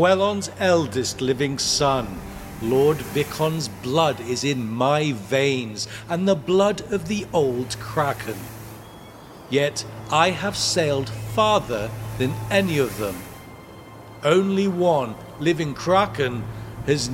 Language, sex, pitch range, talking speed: English, male, 110-175 Hz, 110 wpm